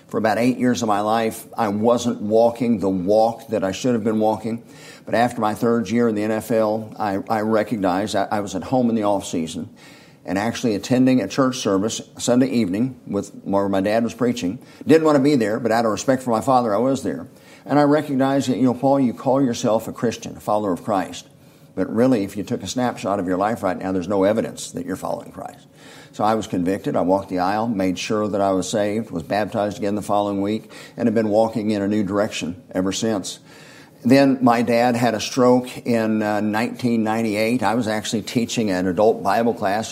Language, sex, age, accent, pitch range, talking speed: English, male, 50-69, American, 105-120 Hz, 225 wpm